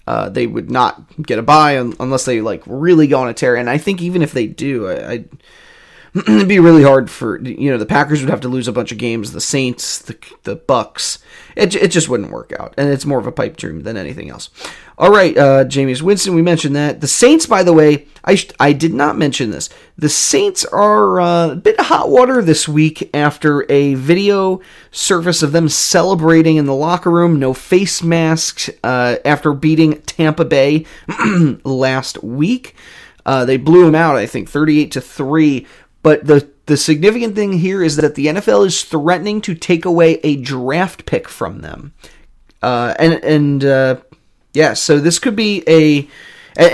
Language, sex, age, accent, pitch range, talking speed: English, male, 30-49, American, 135-170 Hz, 200 wpm